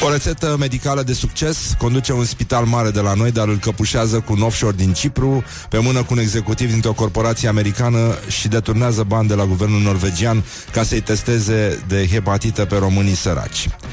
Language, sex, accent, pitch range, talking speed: Romanian, male, native, 90-110 Hz, 190 wpm